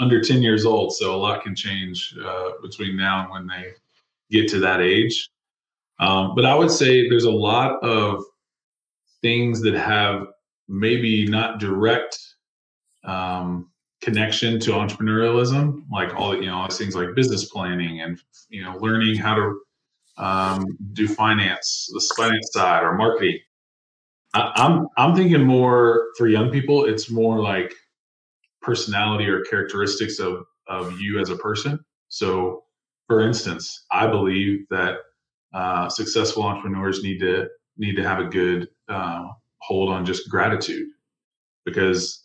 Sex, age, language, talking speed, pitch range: male, 20-39, English, 150 wpm, 95-115 Hz